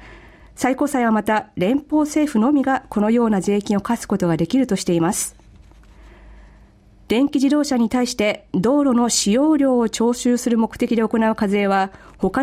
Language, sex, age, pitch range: Japanese, female, 40-59, 195-260 Hz